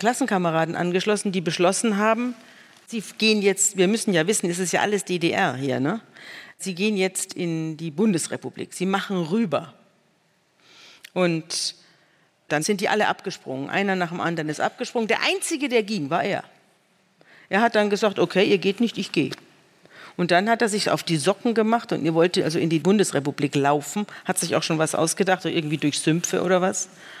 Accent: German